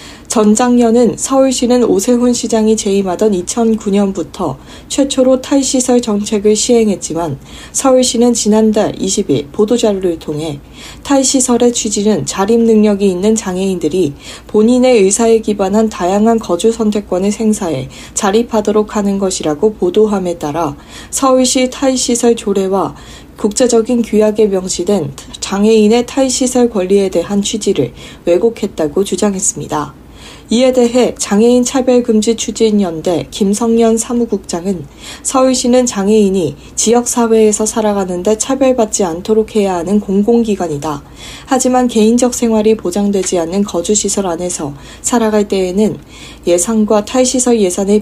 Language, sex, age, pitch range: Korean, female, 40-59, 195-235 Hz